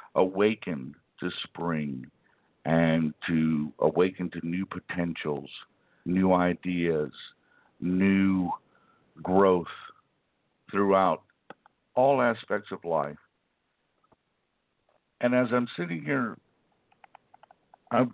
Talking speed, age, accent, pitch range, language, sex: 80 wpm, 60-79, American, 85-110 Hz, English, male